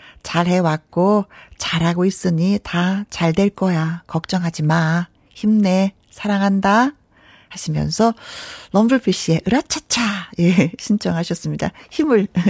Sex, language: female, Korean